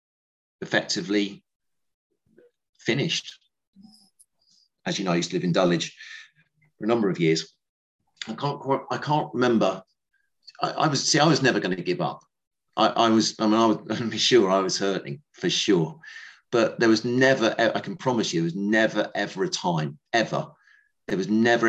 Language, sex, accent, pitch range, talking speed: English, male, British, 90-145 Hz, 180 wpm